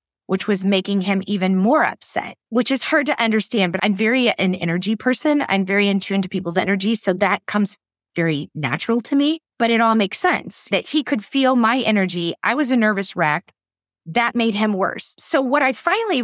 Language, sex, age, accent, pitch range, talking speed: English, female, 30-49, American, 180-245 Hz, 205 wpm